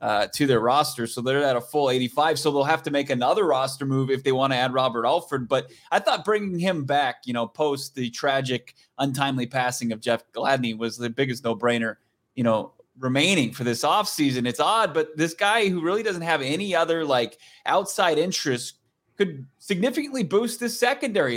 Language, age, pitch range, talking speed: English, 30-49, 130-170 Hz, 200 wpm